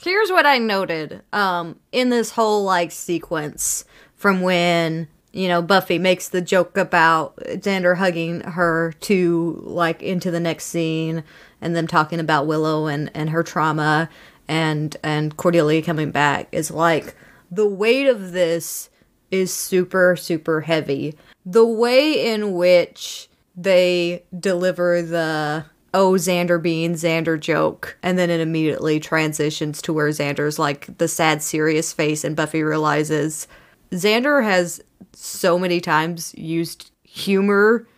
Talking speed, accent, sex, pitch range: 135 wpm, American, female, 160-185 Hz